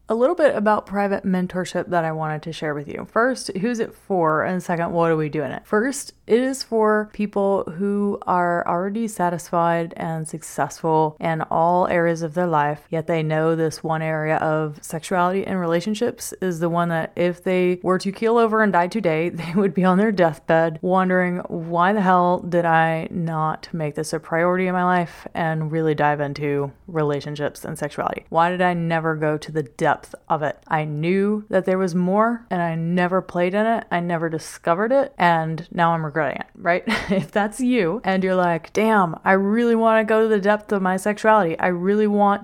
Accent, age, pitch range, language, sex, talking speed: American, 30-49, 165-205 Hz, English, female, 205 wpm